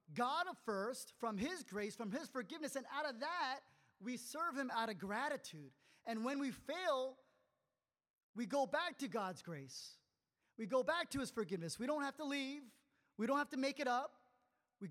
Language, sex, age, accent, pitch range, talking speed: English, male, 30-49, American, 165-245 Hz, 190 wpm